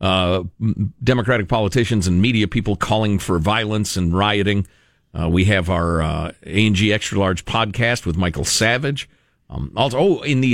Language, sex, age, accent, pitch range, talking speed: English, male, 50-69, American, 110-175 Hz, 160 wpm